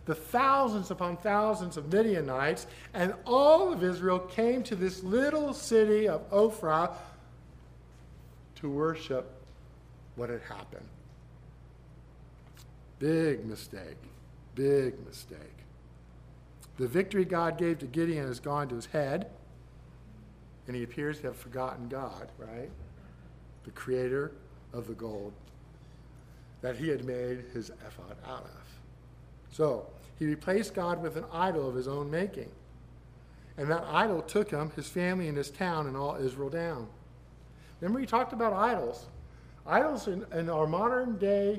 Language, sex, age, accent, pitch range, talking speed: English, male, 50-69, American, 130-210 Hz, 135 wpm